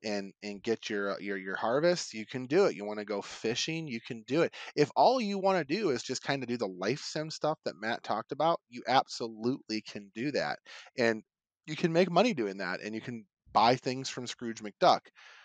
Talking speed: 230 wpm